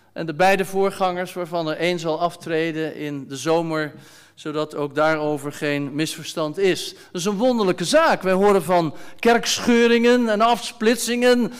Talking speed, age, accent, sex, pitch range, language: 150 wpm, 50-69, Dutch, male, 175-220 Hz, Dutch